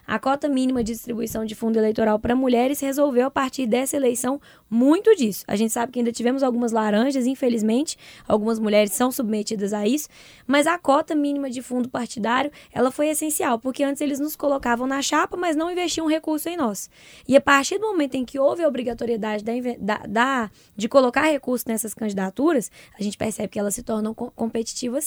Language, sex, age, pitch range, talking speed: Portuguese, female, 10-29, 235-295 Hz, 185 wpm